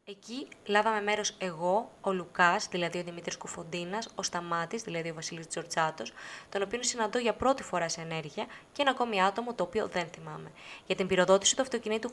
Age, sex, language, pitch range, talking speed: 20-39, female, Greek, 175-210 Hz, 185 wpm